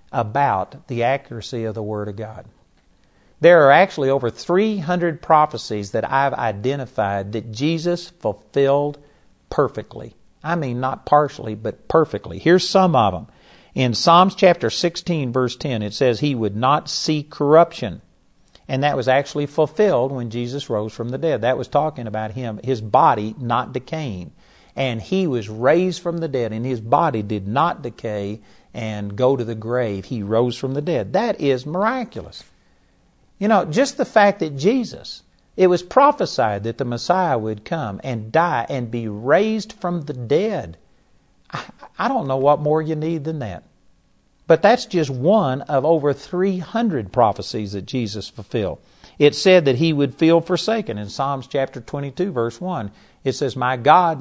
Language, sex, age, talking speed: English, male, 50-69, 165 wpm